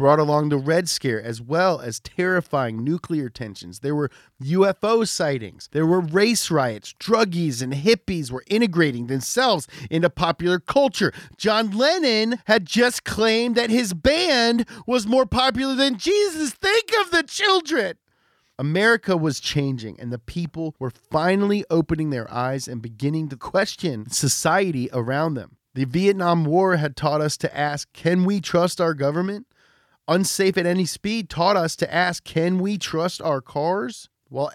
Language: English